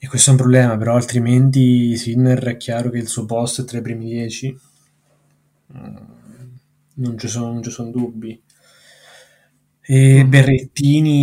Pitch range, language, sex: 115-130 Hz, Italian, male